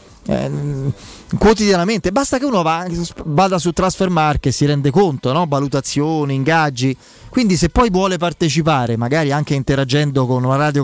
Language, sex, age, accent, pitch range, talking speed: Italian, male, 30-49, native, 145-185 Hz, 145 wpm